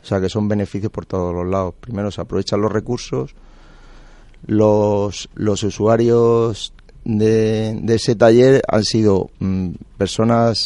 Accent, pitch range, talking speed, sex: Spanish, 100-115 Hz, 140 wpm, male